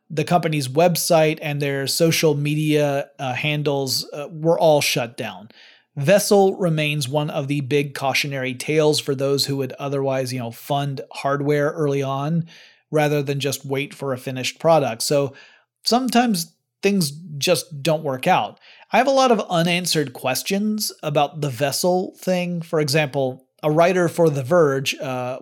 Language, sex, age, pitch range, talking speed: English, male, 30-49, 140-170 Hz, 160 wpm